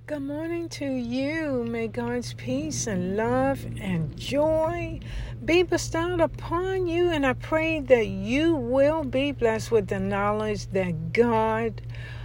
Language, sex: English, female